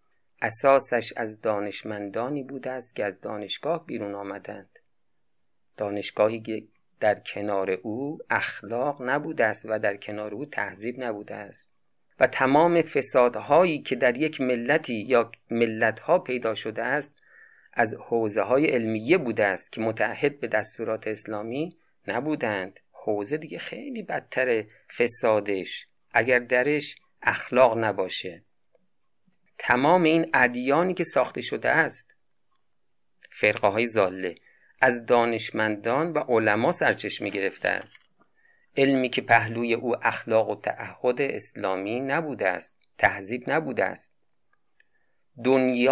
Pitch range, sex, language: 110-135 Hz, male, Persian